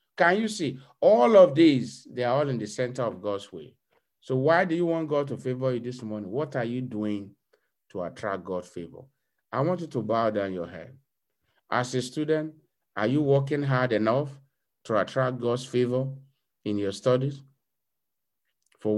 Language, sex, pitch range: English, male, 115-140 Hz